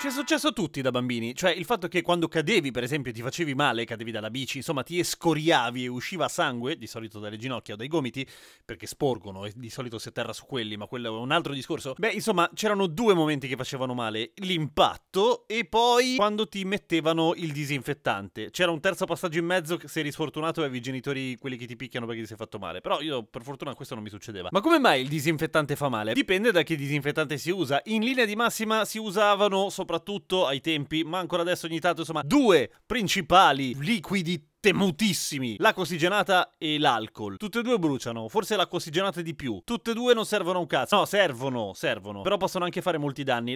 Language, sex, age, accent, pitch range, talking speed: Italian, male, 30-49, native, 130-195 Hz, 220 wpm